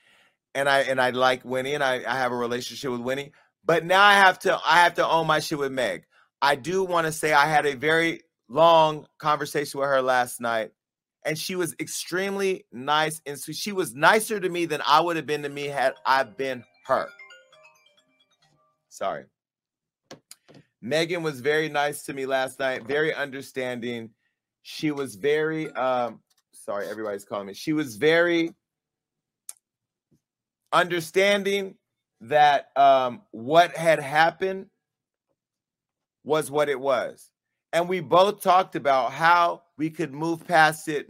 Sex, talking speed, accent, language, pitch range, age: male, 160 wpm, American, English, 135-170 Hz, 30-49